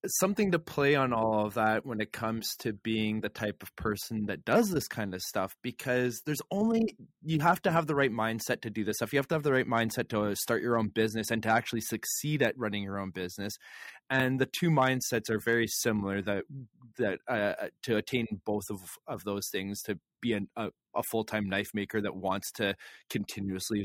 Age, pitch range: 20-39, 105-125 Hz